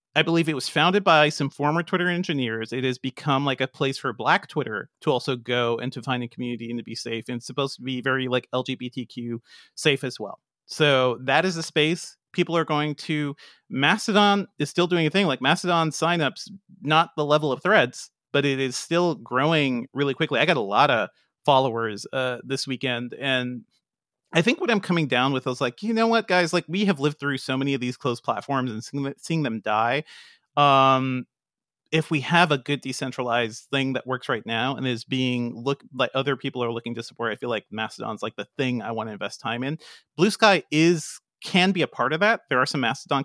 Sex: male